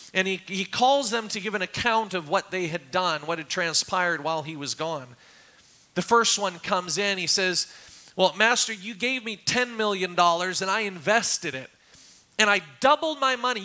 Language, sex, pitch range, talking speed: English, male, 160-220 Hz, 195 wpm